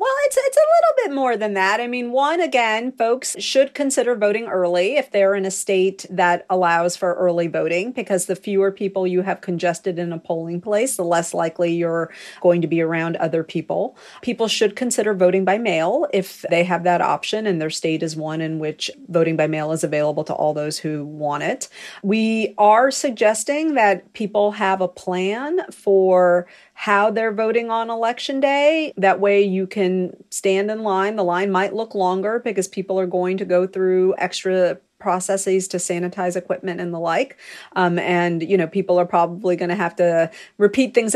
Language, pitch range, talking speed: English, 180-225 Hz, 195 wpm